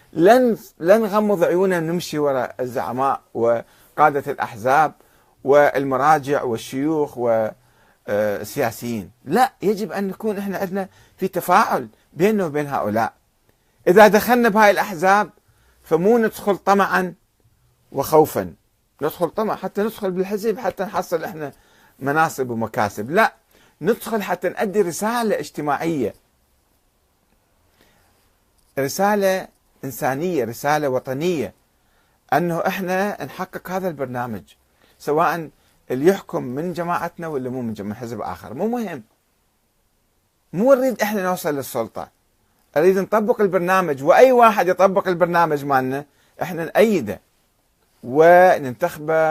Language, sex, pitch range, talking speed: Arabic, male, 120-190 Hz, 105 wpm